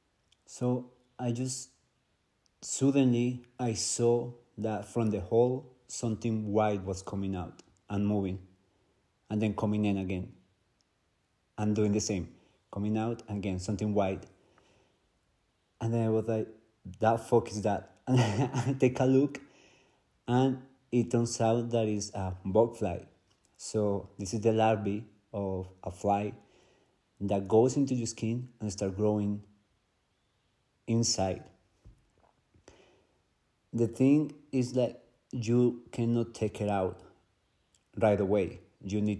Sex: male